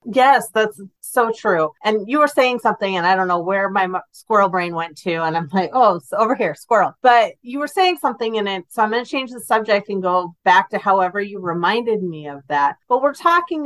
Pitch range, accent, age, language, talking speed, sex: 180-235 Hz, American, 30-49, English, 235 wpm, female